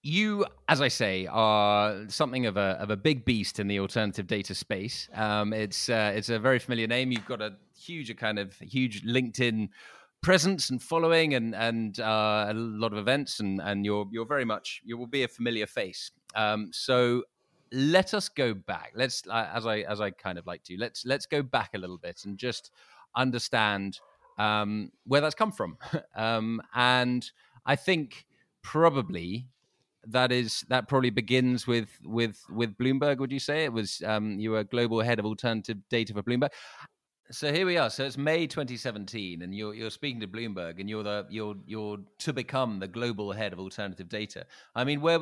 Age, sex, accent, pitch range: 30-49, male, British, 105-130 Hz